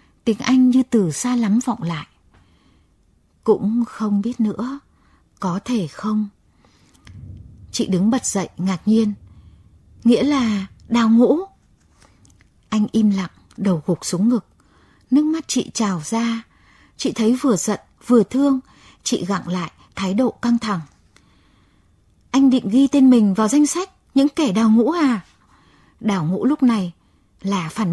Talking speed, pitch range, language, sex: 150 wpm, 185-245 Hz, Vietnamese, female